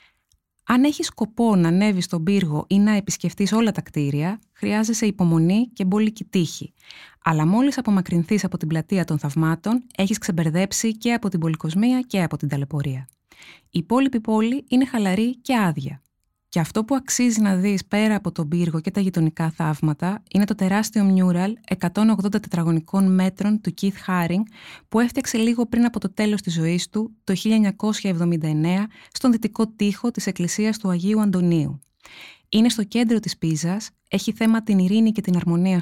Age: 20-39